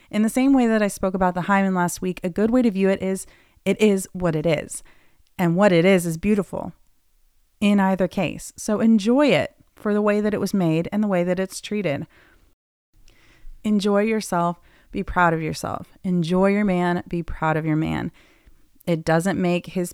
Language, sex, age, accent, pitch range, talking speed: English, female, 30-49, American, 165-205 Hz, 200 wpm